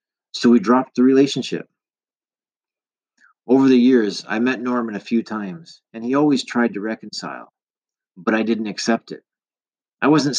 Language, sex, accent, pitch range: English, male, American, 105-135 Hz